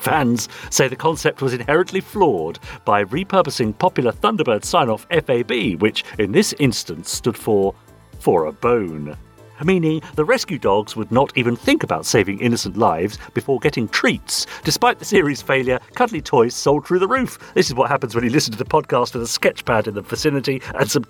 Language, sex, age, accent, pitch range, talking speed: English, male, 50-69, British, 105-165 Hz, 185 wpm